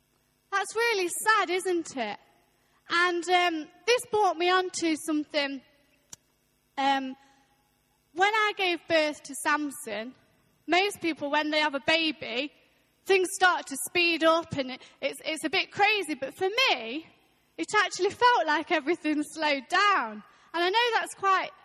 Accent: British